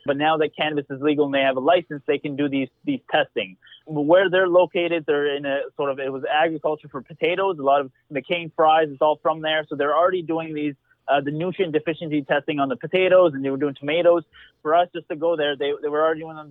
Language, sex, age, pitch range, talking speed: English, male, 20-39, 140-160 Hz, 245 wpm